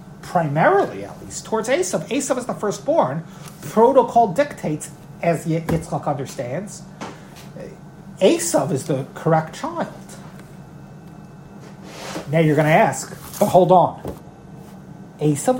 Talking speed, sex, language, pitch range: 110 wpm, male, English, 170-225 Hz